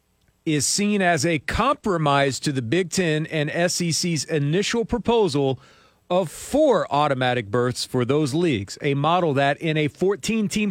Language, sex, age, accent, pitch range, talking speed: English, male, 40-59, American, 140-195 Hz, 145 wpm